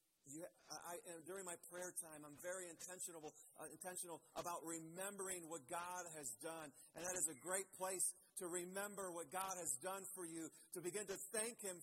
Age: 50-69